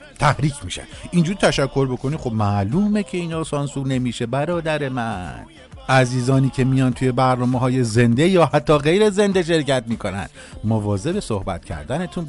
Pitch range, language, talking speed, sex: 125-185 Hz, Persian, 140 wpm, male